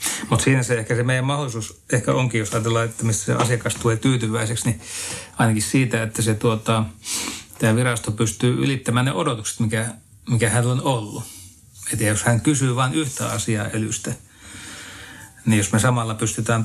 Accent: native